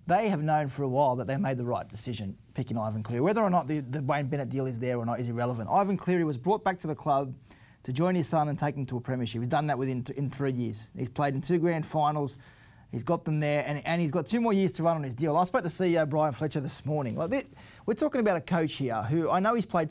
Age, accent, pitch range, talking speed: 20-39, Australian, 135-175 Hz, 295 wpm